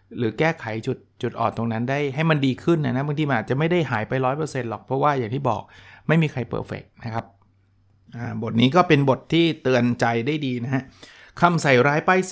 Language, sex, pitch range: Thai, male, 115-145 Hz